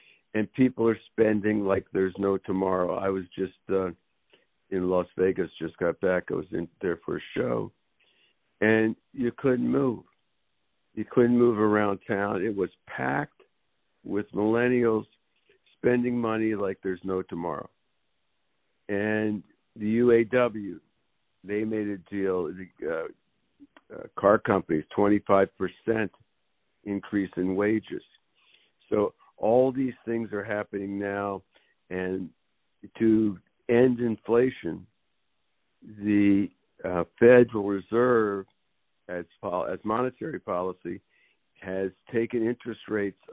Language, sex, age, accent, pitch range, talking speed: English, male, 60-79, American, 95-115 Hz, 115 wpm